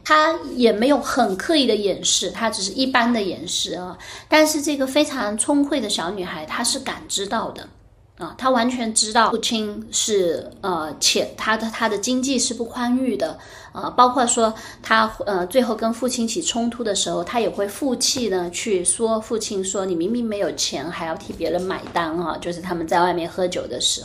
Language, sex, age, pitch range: Chinese, female, 20-39, 185-245 Hz